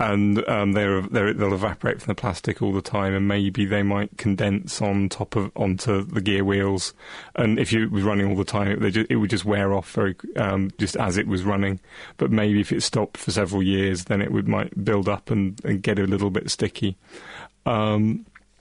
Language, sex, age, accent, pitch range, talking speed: English, male, 30-49, British, 100-105 Hz, 225 wpm